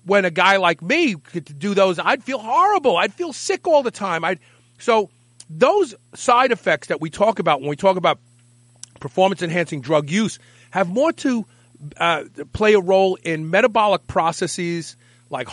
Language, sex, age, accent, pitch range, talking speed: English, male, 40-59, American, 125-200 Hz, 170 wpm